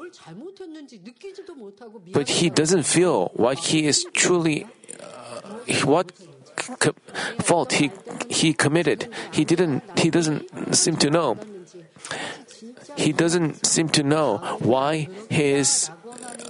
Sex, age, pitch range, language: male, 40-59, 140-175 Hz, Korean